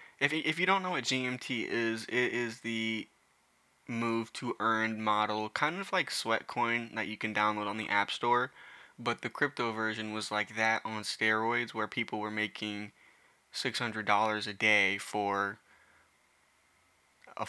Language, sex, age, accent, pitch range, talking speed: English, male, 20-39, American, 105-125 Hz, 155 wpm